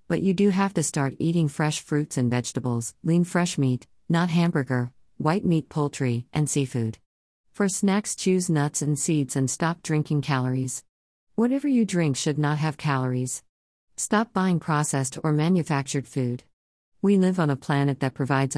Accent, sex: American, female